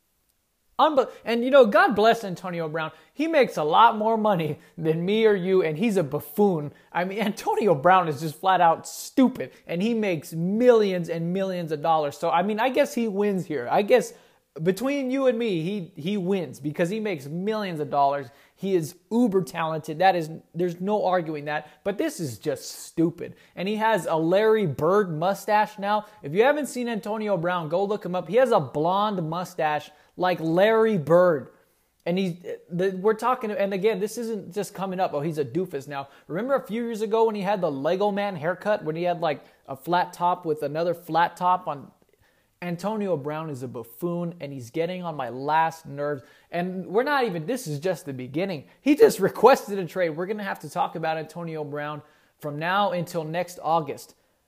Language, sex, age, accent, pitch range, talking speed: English, male, 30-49, American, 160-210 Hz, 200 wpm